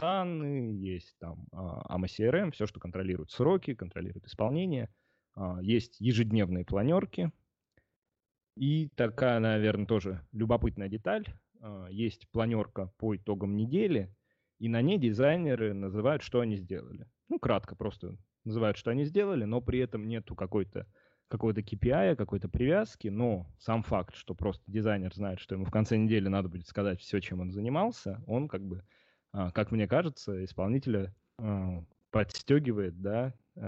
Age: 20-39